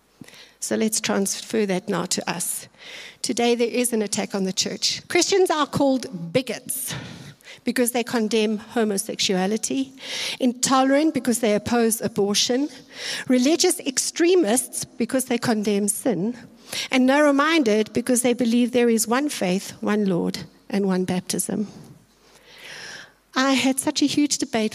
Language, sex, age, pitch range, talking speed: English, female, 60-79, 205-265 Hz, 135 wpm